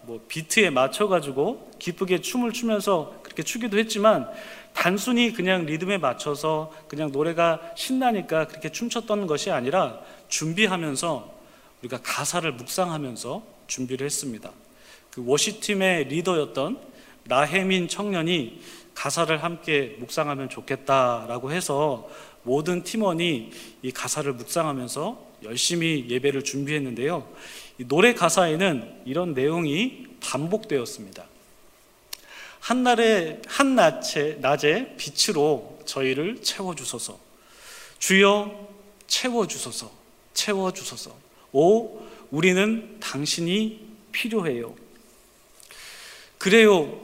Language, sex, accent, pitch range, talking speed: English, male, Korean, 145-215 Hz, 80 wpm